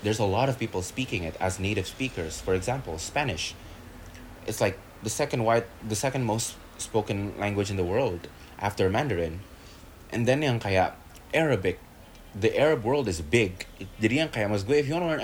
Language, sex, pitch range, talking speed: Indonesian, male, 85-125 Hz, 180 wpm